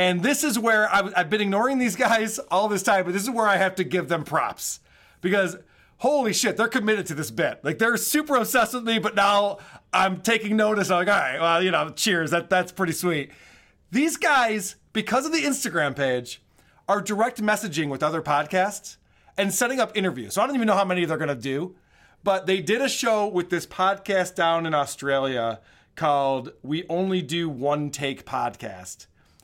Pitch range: 165-225 Hz